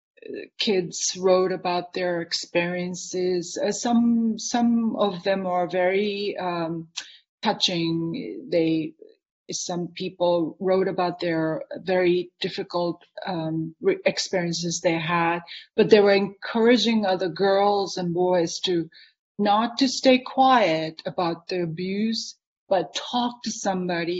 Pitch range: 175-225 Hz